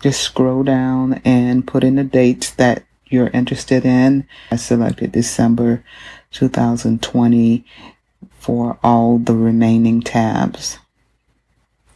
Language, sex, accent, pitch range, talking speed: English, female, American, 115-140 Hz, 105 wpm